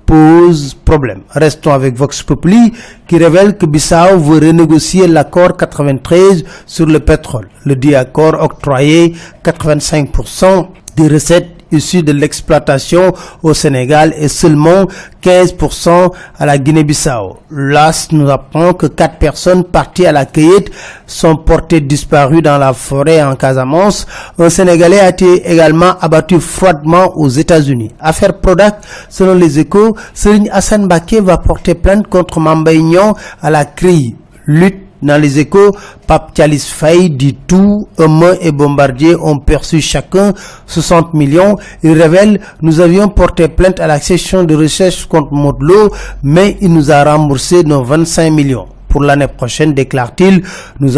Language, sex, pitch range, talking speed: French, male, 145-180 Hz, 140 wpm